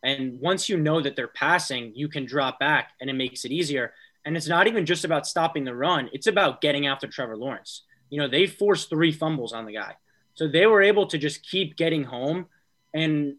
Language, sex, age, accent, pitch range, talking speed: English, male, 20-39, American, 140-175 Hz, 225 wpm